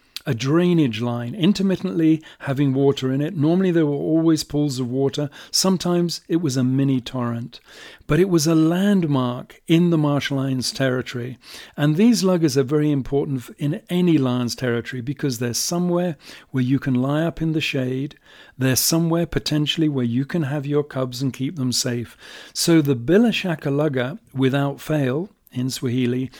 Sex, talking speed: male, 165 wpm